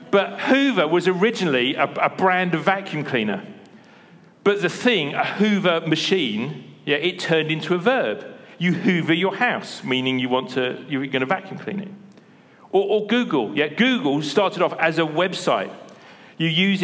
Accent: British